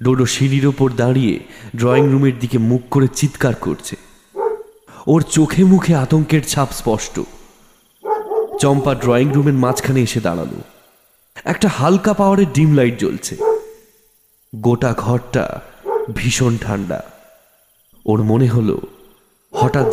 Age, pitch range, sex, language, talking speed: 30-49, 105-135 Hz, male, English, 110 wpm